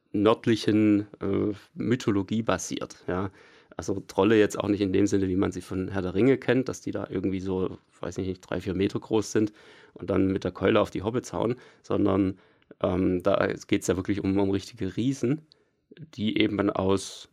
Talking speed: 195 wpm